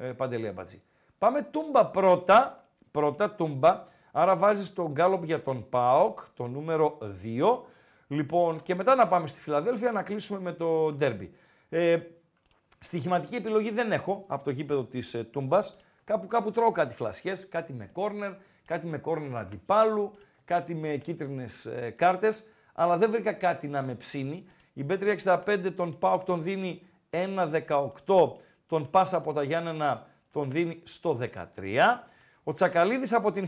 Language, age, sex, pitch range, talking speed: Greek, 40-59, male, 140-195 Hz, 150 wpm